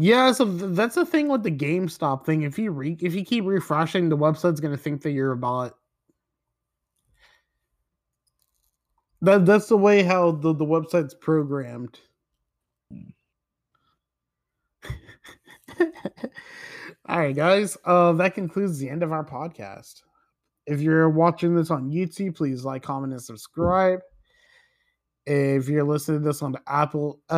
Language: English